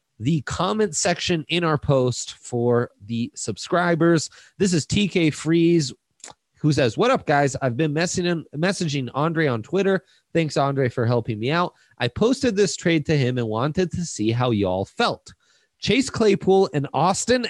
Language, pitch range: English, 120-170 Hz